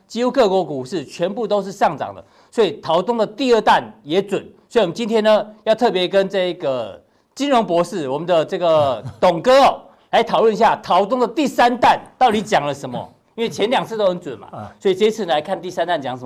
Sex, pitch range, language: male, 165-225 Hz, Chinese